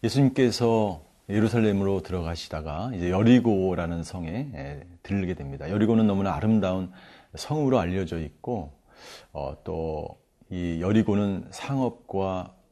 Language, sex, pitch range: Korean, male, 90-125 Hz